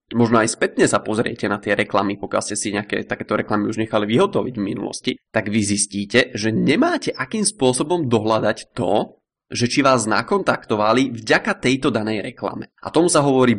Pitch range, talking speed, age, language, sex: 110-130 Hz, 175 wpm, 20-39, Czech, male